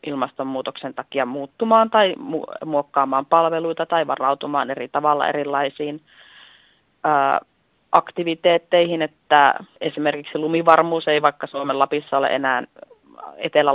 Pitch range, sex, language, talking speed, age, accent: 140-155 Hz, female, Finnish, 105 wpm, 30-49, native